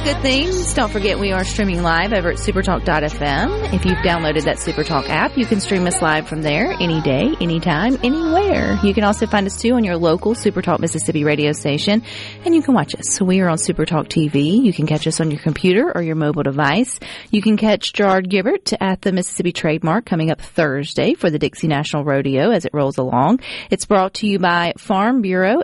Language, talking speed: English, 210 wpm